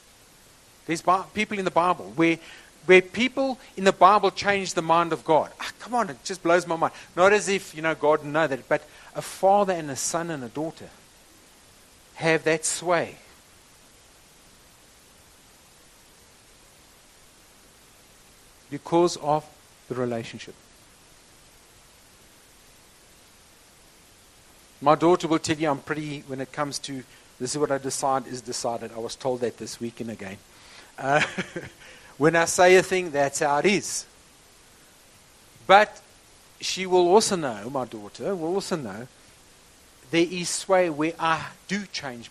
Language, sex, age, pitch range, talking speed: English, male, 50-69, 135-180 Hz, 145 wpm